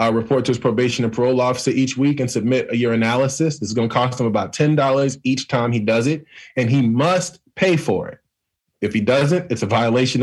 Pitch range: 125-180 Hz